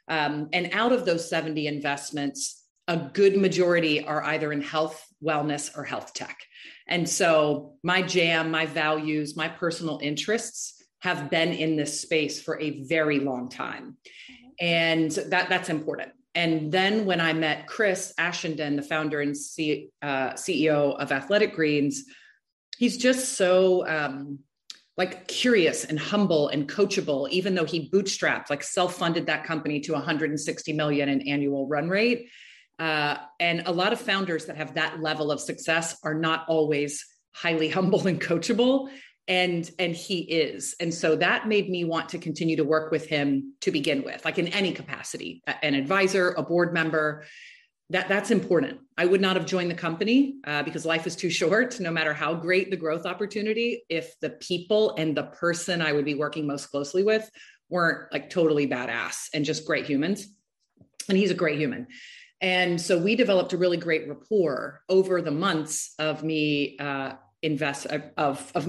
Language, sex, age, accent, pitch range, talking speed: English, female, 30-49, American, 150-185 Hz, 170 wpm